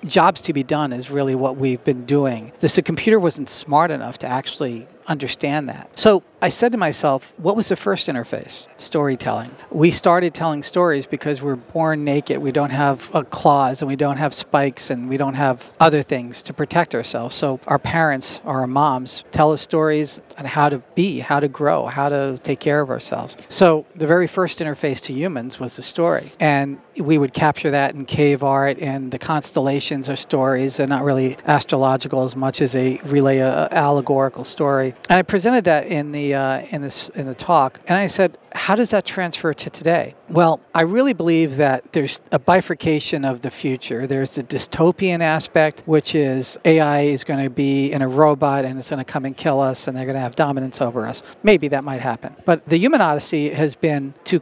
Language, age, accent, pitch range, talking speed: English, 50-69, American, 135-165 Hz, 205 wpm